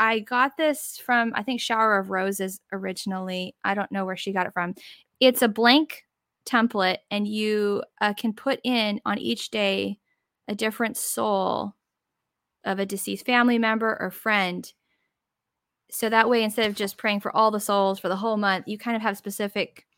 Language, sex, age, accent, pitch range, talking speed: English, female, 10-29, American, 185-225 Hz, 185 wpm